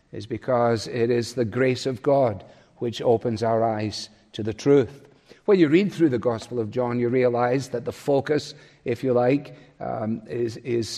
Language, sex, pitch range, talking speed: English, male, 115-135 Hz, 185 wpm